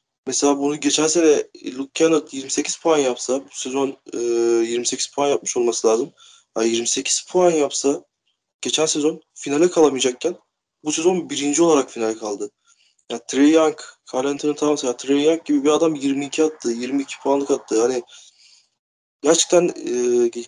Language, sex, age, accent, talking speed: Turkish, male, 30-49, native, 145 wpm